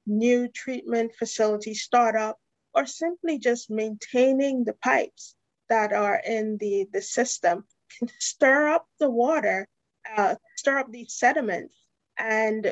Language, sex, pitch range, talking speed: English, female, 205-245 Hz, 125 wpm